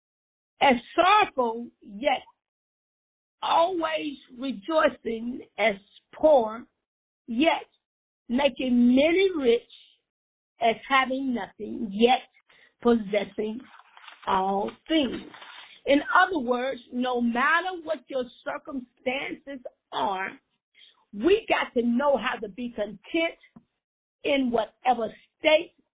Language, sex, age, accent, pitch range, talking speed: English, female, 50-69, American, 225-270 Hz, 90 wpm